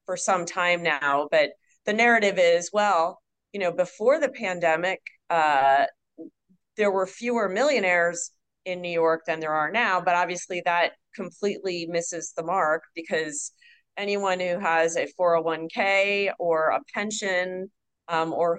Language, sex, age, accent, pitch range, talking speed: English, female, 30-49, American, 160-200 Hz, 140 wpm